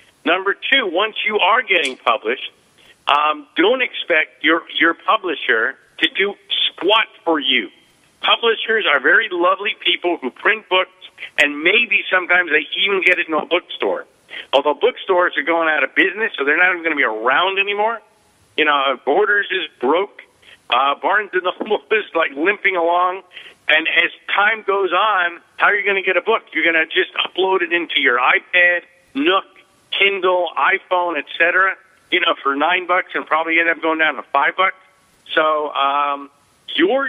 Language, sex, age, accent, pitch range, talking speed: English, male, 50-69, American, 165-195 Hz, 175 wpm